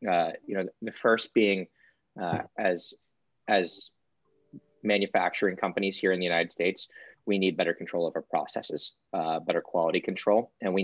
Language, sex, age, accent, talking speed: English, male, 30-49, American, 160 wpm